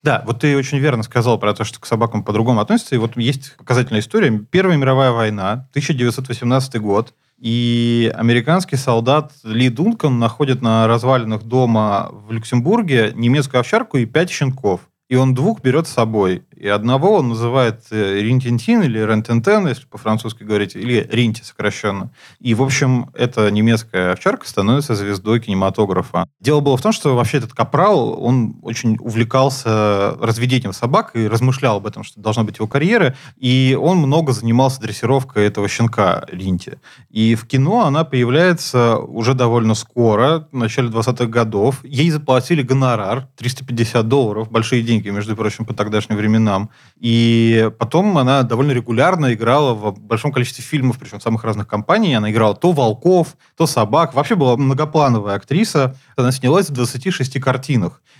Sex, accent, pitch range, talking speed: male, native, 110-135 Hz, 155 wpm